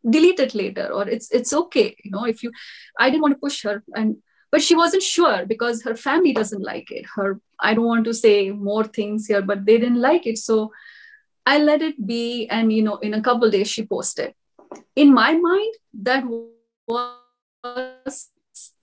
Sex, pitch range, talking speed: female, 205-270 Hz, 195 wpm